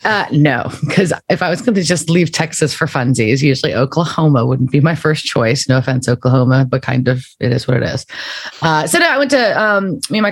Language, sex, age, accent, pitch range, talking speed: English, female, 30-49, American, 135-175 Hz, 240 wpm